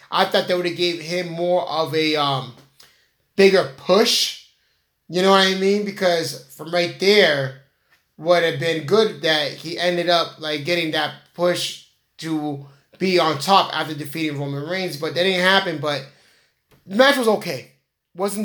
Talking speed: 170 wpm